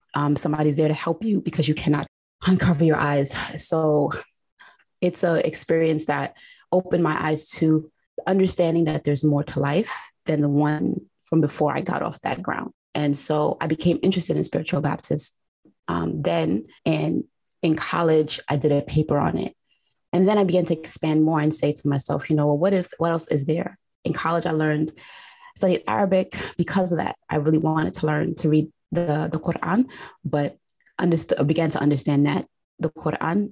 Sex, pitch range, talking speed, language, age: female, 150-170 Hz, 185 wpm, English, 20-39